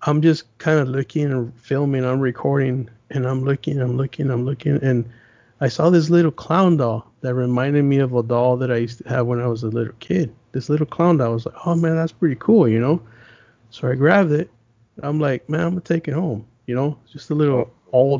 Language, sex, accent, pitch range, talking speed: English, male, American, 120-140 Hz, 235 wpm